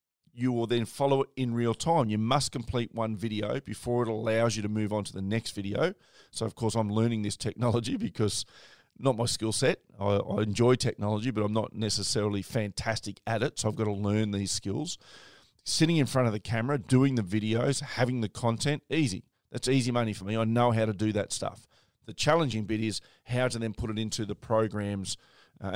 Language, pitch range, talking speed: English, 105-125 Hz, 210 wpm